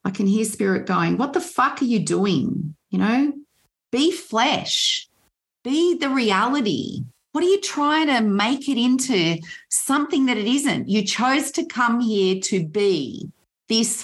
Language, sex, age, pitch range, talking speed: English, female, 40-59, 190-240 Hz, 165 wpm